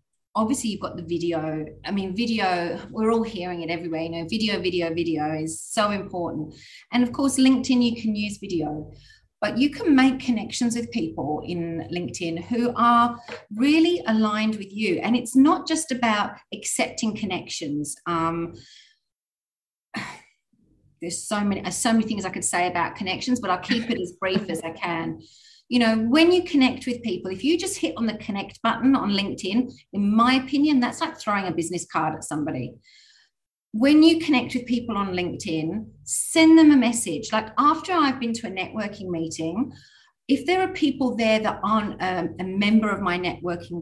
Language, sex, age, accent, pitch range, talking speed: English, female, 30-49, Australian, 175-245 Hz, 180 wpm